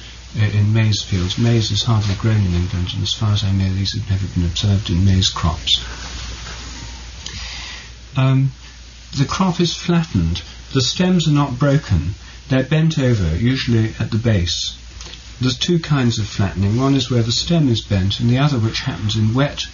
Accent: British